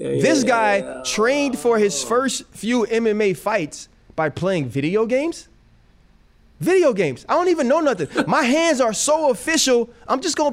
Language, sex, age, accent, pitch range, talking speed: English, male, 30-49, American, 170-255 Hz, 160 wpm